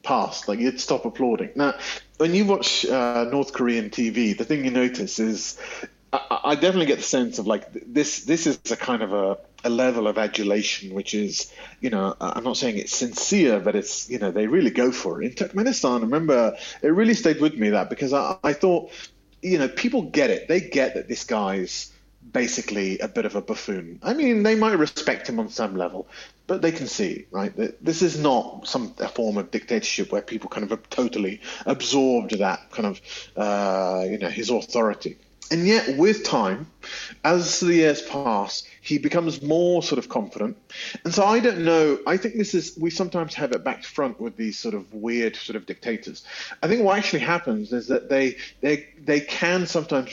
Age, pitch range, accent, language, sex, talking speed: 30-49, 115-175 Hz, British, English, male, 205 wpm